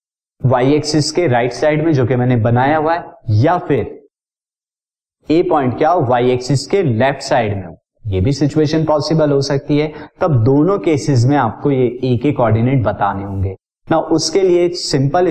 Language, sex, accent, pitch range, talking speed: Hindi, male, native, 120-155 Hz, 185 wpm